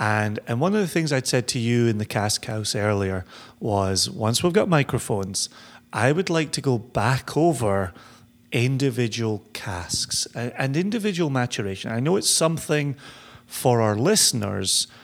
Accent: British